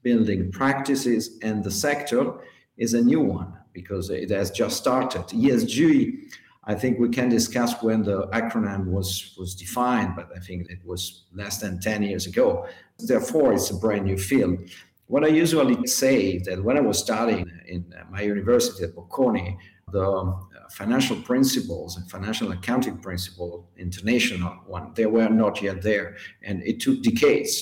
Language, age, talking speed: English, 50-69, 160 wpm